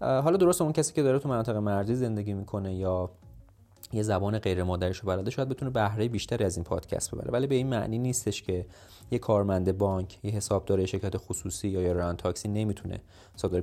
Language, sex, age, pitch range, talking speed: Persian, male, 30-49, 95-120 Hz, 195 wpm